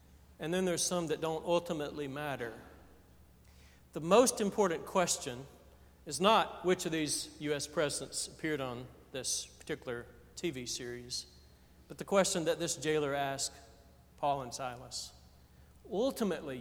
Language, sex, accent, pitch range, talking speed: English, male, American, 140-215 Hz, 130 wpm